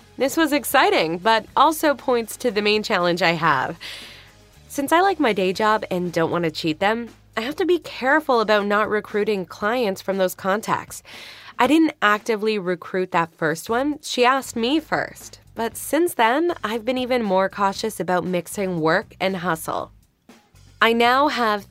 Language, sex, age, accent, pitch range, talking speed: English, female, 20-39, American, 180-240 Hz, 175 wpm